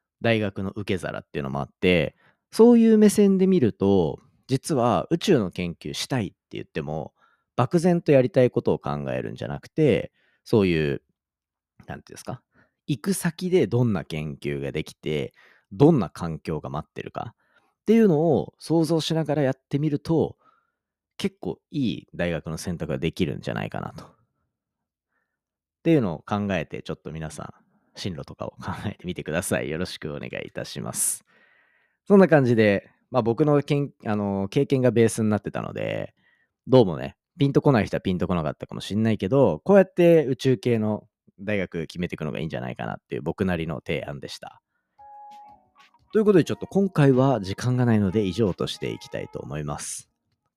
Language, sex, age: Japanese, male, 40-59